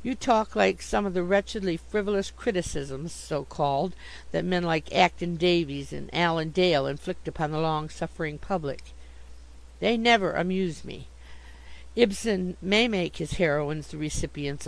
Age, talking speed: 50-69, 135 wpm